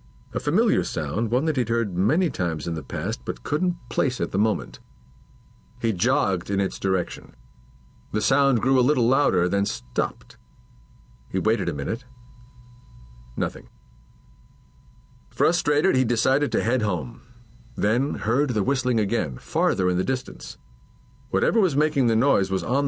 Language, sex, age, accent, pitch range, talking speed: English, male, 50-69, American, 95-130 Hz, 150 wpm